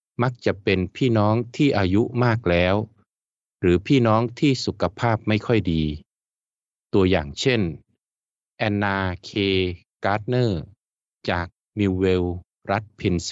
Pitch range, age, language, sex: 90-115 Hz, 20-39, Thai, male